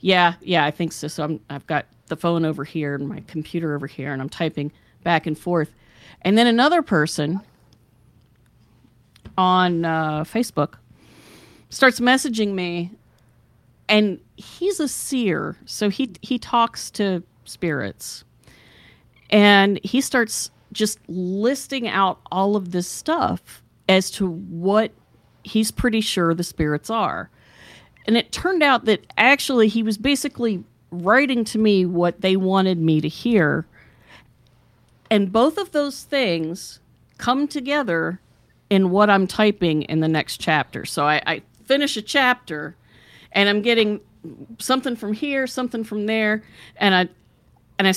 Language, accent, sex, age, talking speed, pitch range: English, American, female, 40-59, 145 wpm, 155-220 Hz